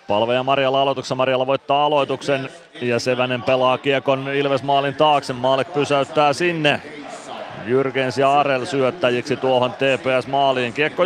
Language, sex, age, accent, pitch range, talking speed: Finnish, male, 30-49, native, 130-150 Hz, 120 wpm